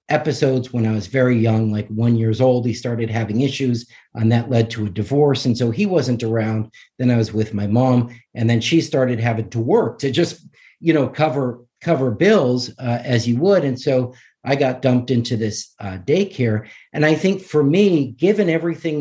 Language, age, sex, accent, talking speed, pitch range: English, 50-69, male, American, 205 wpm, 120-160 Hz